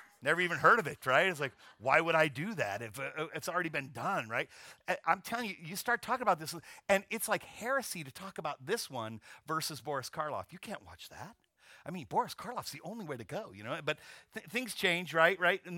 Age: 40-59